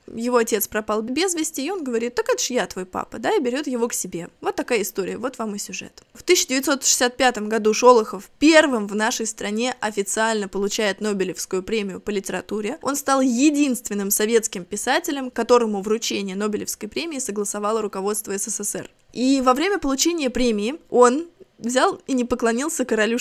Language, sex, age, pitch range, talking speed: Russian, female, 20-39, 215-265 Hz, 165 wpm